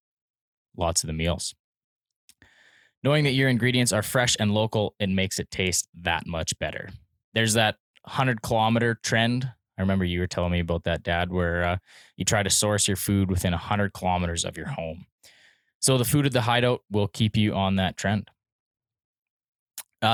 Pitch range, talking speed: 100-120 Hz, 180 wpm